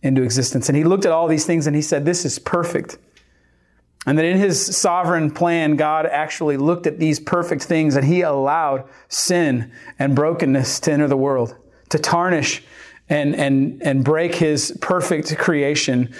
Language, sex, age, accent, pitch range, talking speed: English, male, 40-59, American, 135-160 Hz, 175 wpm